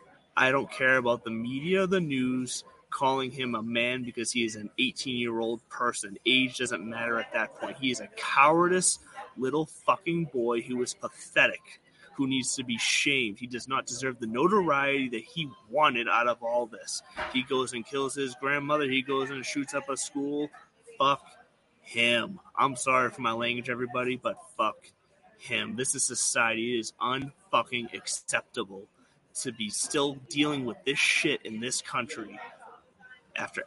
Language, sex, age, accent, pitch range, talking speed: English, male, 30-49, American, 120-145 Hz, 165 wpm